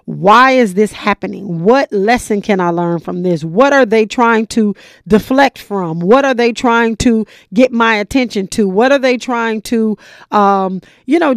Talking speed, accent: 185 wpm, American